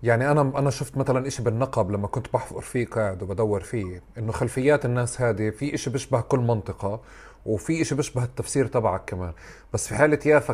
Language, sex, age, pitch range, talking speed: Arabic, male, 30-49, 110-140 Hz, 190 wpm